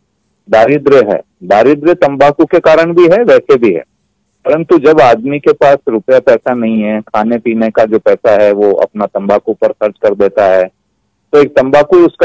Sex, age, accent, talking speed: male, 40-59, native, 100 wpm